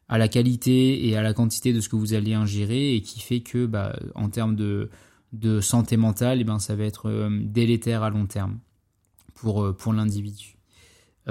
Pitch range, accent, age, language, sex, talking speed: 105-120 Hz, French, 20-39, French, male, 190 wpm